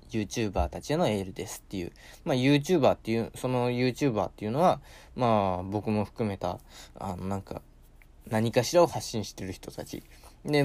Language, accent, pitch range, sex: Japanese, native, 100-145 Hz, male